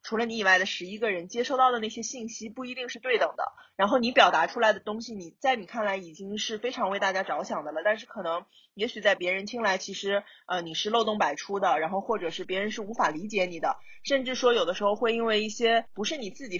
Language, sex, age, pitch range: Chinese, female, 20-39, 180-230 Hz